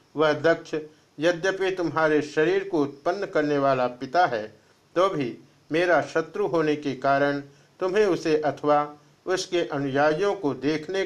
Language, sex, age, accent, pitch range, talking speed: Hindi, male, 50-69, native, 125-170 Hz, 135 wpm